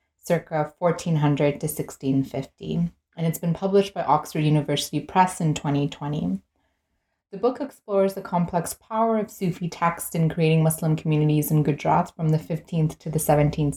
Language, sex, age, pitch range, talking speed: English, female, 30-49, 150-180 Hz, 155 wpm